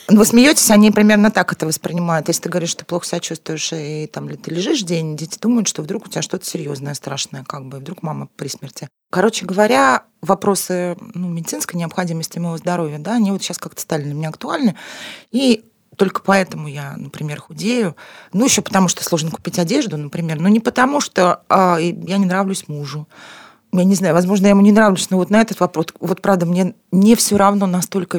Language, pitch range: Russian, 160-205 Hz